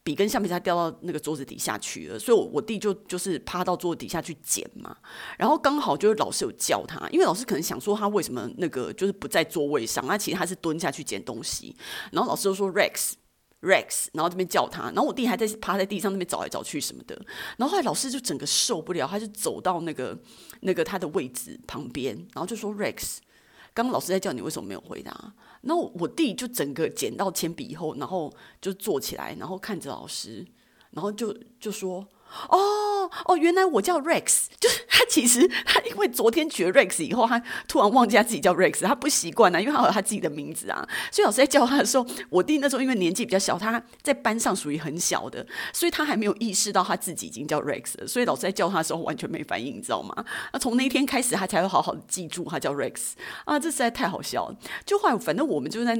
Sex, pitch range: female, 175-265 Hz